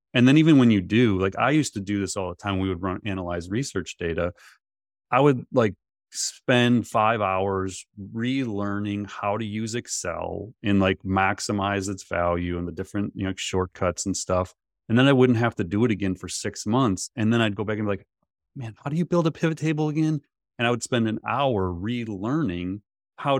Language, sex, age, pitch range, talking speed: English, male, 30-49, 95-115 Hz, 205 wpm